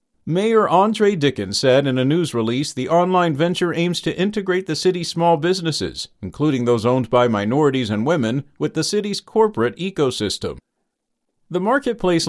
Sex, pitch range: male, 130-185 Hz